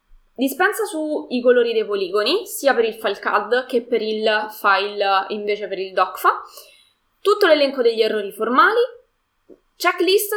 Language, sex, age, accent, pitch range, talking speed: Italian, female, 20-39, native, 210-310 Hz, 140 wpm